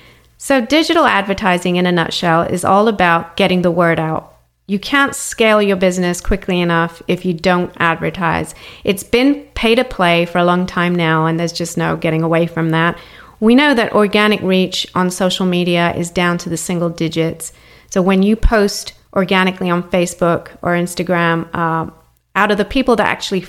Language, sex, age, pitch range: English, female, 30-49, 175-215 Hz